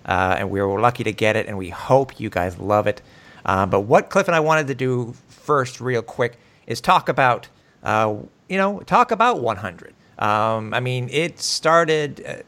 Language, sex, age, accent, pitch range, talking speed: English, male, 50-69, American, 105-130 Hz, 195 wpm